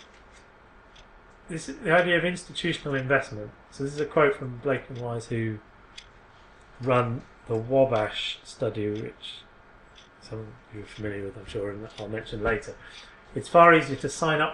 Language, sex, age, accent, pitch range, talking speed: English, male, 30-49, British, 110-150 Hz, 165 wpm